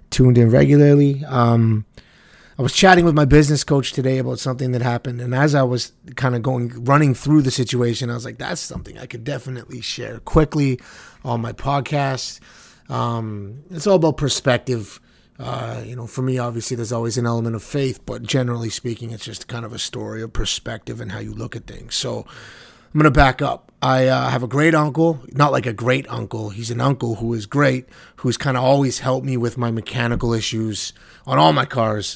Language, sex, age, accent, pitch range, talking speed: English, male, 30-49, American, 115-140 Hz, 205 wpm